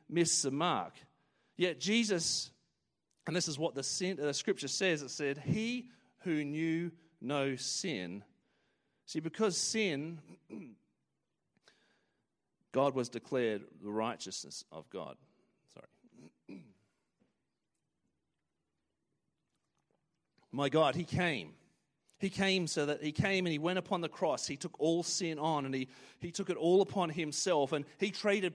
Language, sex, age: English, male, 40-59